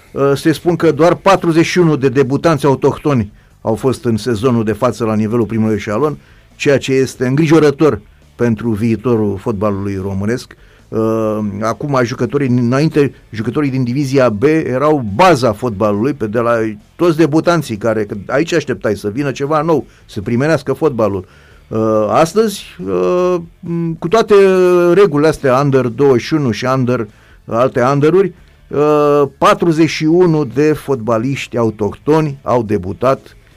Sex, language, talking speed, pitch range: male, Romanian, 125 wpm, 110-150 Hz